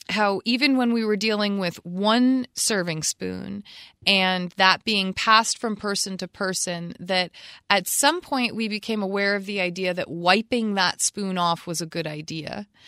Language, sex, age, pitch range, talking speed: English, female, 30-49, 200-240 Hz, 170 wpm